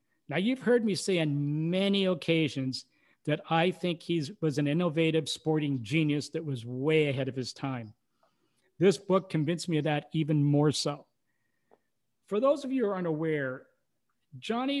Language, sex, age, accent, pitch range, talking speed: English, male, 50-69, American, 145-175 Hz, 165 wpm